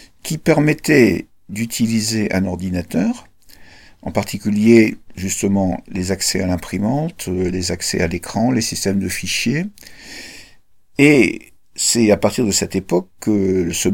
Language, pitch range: French, 95-145 Hz